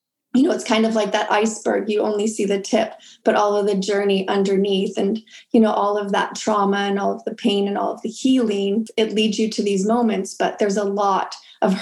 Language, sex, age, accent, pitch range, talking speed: English, female, 20-39, American, 200-230 Hz, 240 wpm